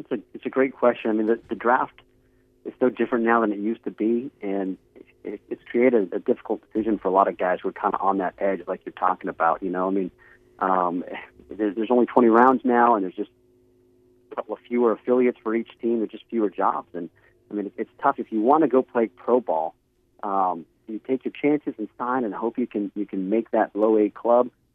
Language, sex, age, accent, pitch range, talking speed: English, male, 40-59, American, 105-125 Hz, 240 wpm